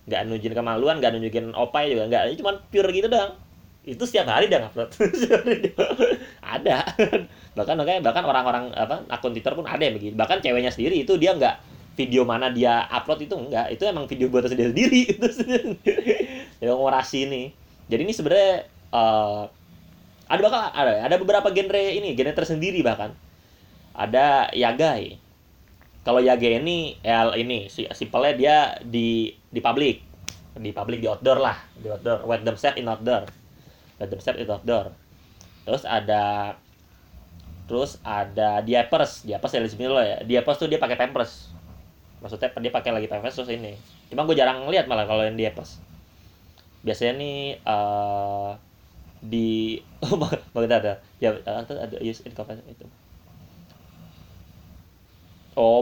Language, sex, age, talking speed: Indonesian, male, 20-39, 145 wpm